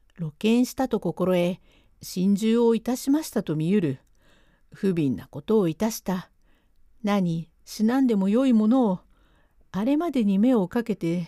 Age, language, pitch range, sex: 50-69, Japanese, 180-245 Hz, female